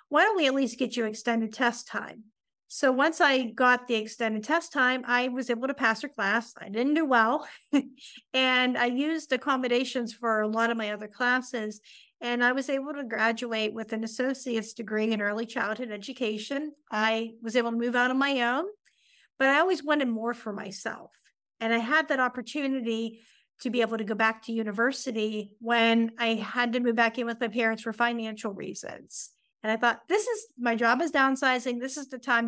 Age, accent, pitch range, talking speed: 50-69, American, 225-265 Hz, 200 wpm